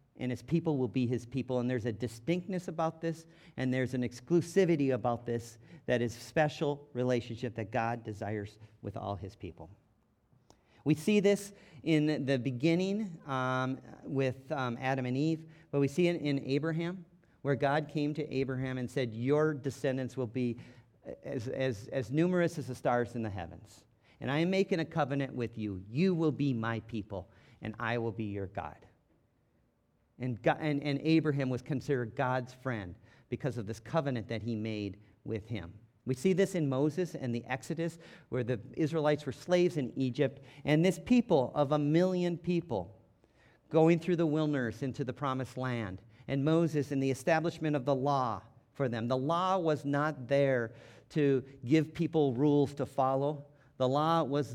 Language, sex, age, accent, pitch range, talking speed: English, male, 50-69, American, 120-150 Hz, 175 wpm